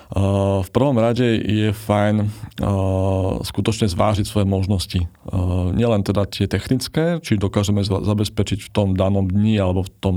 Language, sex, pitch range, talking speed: Slovak, male, 100-115 Hz, 160 wpm